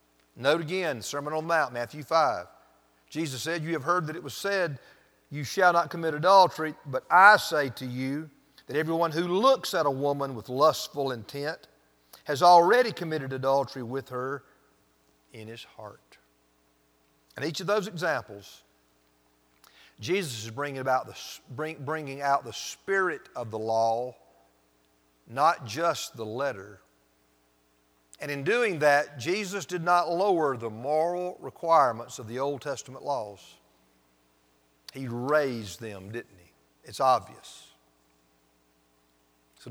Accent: American